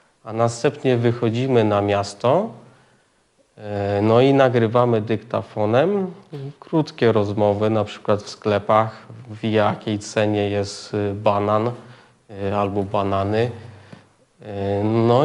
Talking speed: 90 wpm